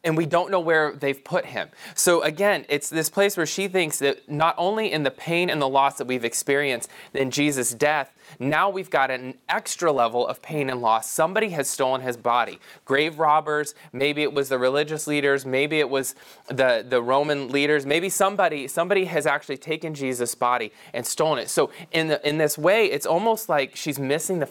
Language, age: English, 20-39